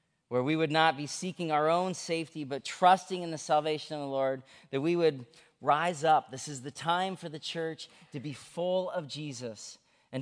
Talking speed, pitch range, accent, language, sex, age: 205 wpm, 130-165 Hz, American, English, male, 40-59